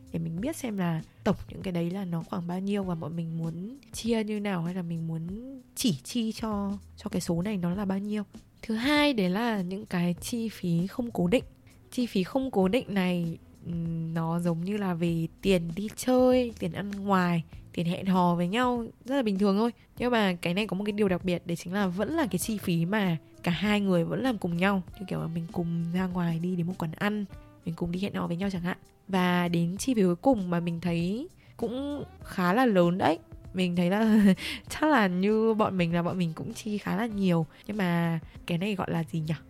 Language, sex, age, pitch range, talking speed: Vietnamese, female, 20-39, 170-210 Hz, 240 wpm